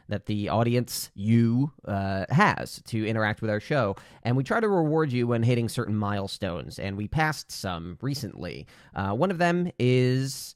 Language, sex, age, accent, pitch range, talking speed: English, male, 30-49, American, 105-135 Hz, 175 wpm